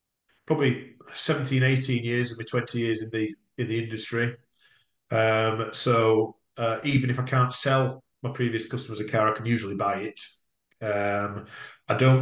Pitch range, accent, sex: 110-125 Hz, British, male